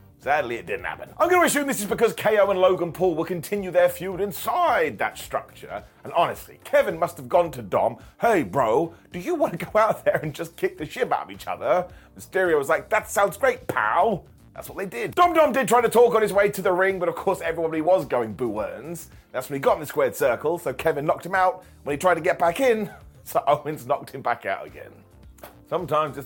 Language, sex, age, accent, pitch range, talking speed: English, male, 30-49, British, 145-205 Hz, 245 wpm